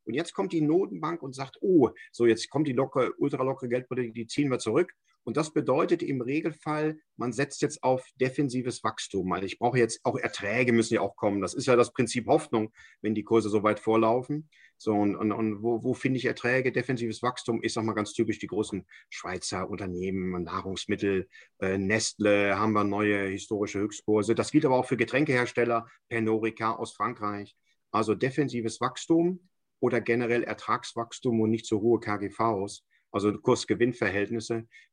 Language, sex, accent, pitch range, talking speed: German, male, German, 105-125 Hz, 170 wpm